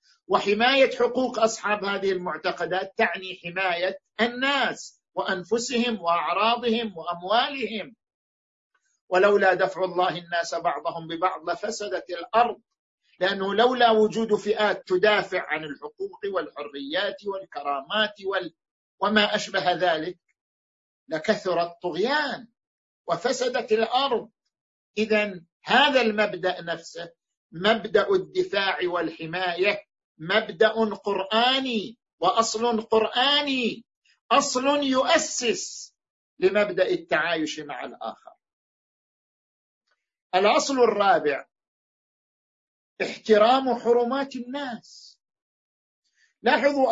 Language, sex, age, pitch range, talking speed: Arabic, male, 50-69, 180-235 Hz, 75 wpm